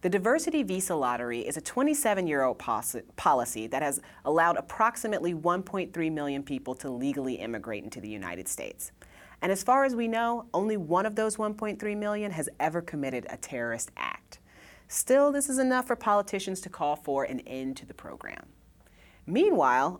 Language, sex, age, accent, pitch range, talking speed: English, female, 30-49, American, 135-210 Hz, 165 wpm